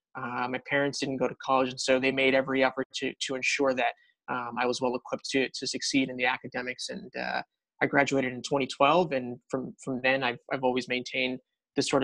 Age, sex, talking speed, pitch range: 20-39, male, 220 wpm, 130-155 Hz